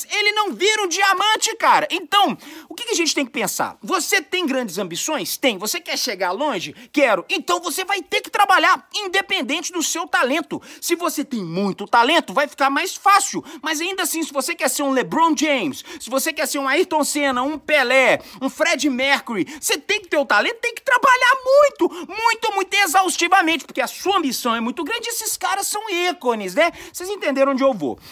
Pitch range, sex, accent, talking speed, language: 275-385 Hz, male, Brazilian, 205 wpm, Portuguese